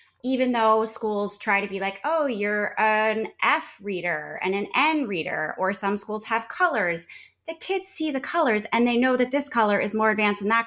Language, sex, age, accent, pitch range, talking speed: English, female, 20-39, American, 185-270 Hz, 210 wpm